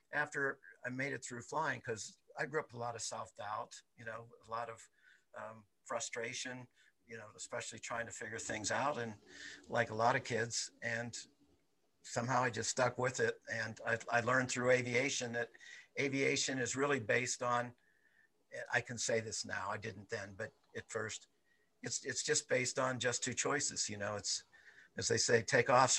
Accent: American